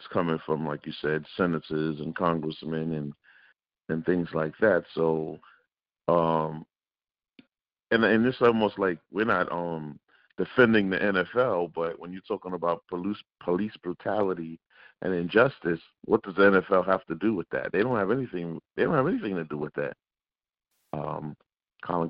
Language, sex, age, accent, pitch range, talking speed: English, male, 50-69, American, 85-100 Hz, 165 wpm